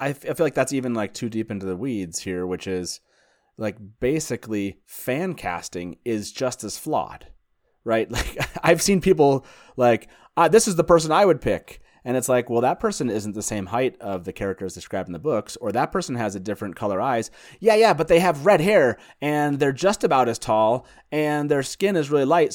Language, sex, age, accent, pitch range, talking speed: English, male, 30-49, American, 105-140 Hz, 215 wpm